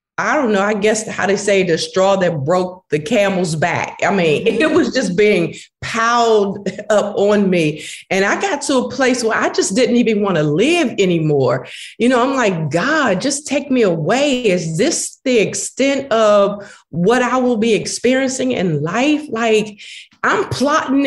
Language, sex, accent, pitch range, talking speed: English, female, American, 195-260 Hz, 180 wpm